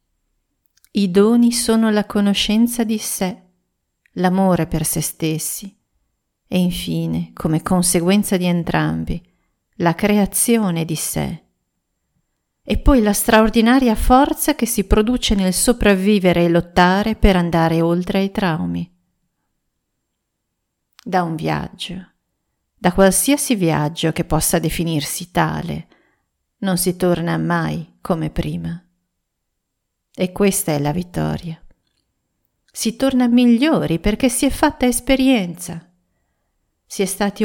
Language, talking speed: Italian, 110 wpm